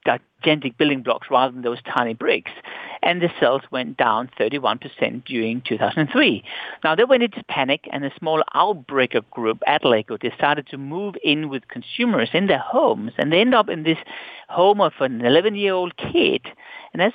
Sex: male